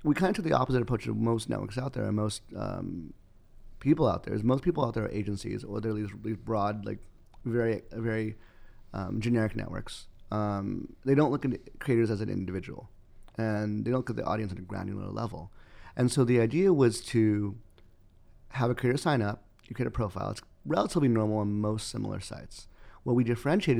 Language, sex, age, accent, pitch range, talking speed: English, male, 30-49, American, 105-125 Hz, 200 wpm